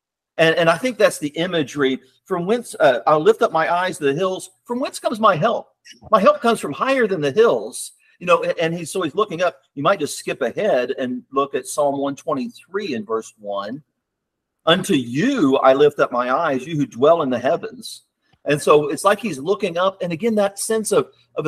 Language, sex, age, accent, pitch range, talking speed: English, male, 50-69, American, 125-180 Hz, 220 wpm